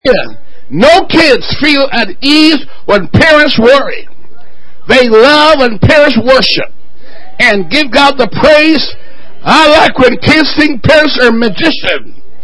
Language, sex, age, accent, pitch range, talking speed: English, male, 60-79, American, 245-315 Hz, 130 wpm